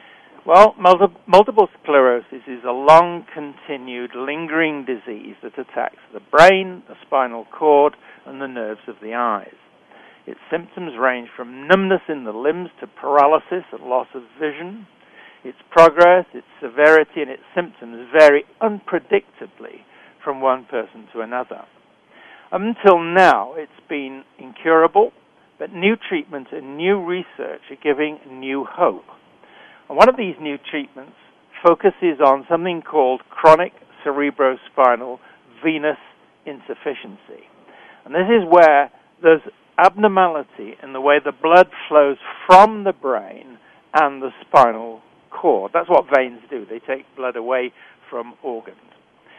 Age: 60-79